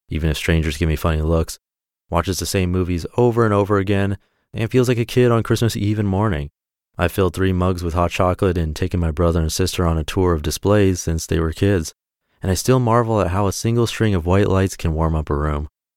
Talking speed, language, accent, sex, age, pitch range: 240 wpm, English, American, male, 30-49, 85-110 Hz